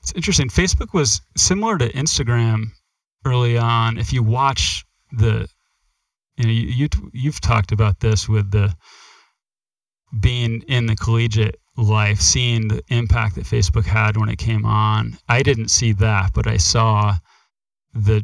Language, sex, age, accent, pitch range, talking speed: English, male, 30-49, American, 105-115 Hz, 145 wpm